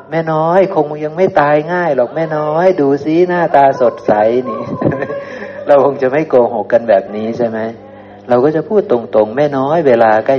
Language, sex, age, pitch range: Thai, male, 60-79, 105-135 Hz